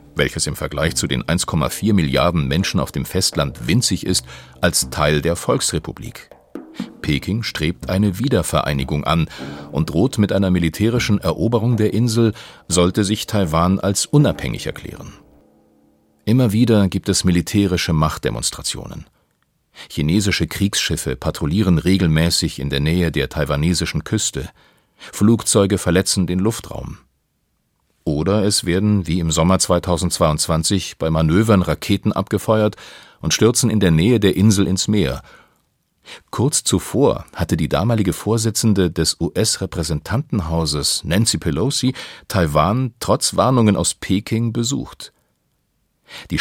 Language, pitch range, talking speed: German, 80-110 Hz, 120 wpm